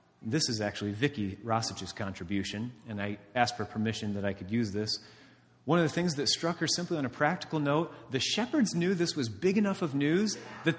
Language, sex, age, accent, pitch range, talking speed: English, male, 30-49, American, 105-160 Hz, 210 wpm